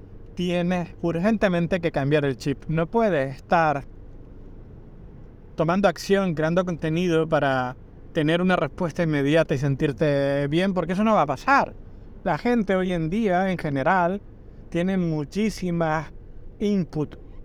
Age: 30-49